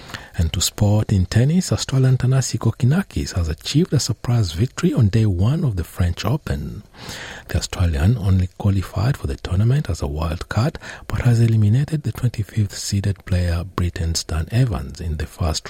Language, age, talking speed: English, 60-79, 165 wpm